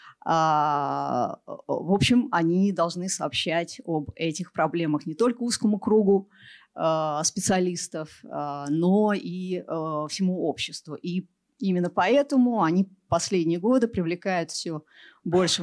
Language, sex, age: Russian, female, 30-49